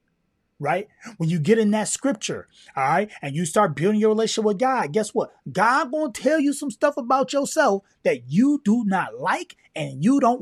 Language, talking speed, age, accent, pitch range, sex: English, 200 wpm, 30-49, American, 180-260 Hz, male